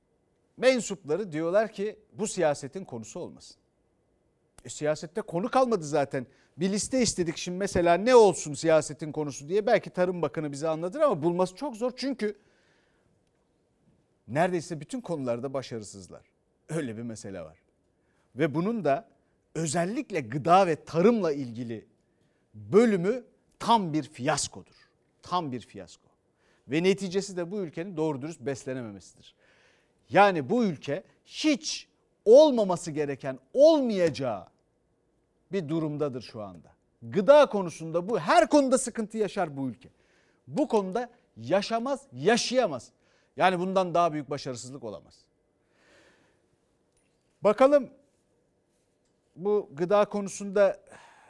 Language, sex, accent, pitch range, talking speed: Turkish, male, native, 145-205 Hz, 115 wpm